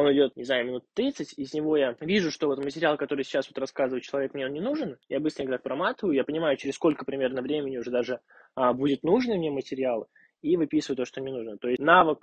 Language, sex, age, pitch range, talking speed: Russian, male, 20-39, 125-155 Hz, 230 wpm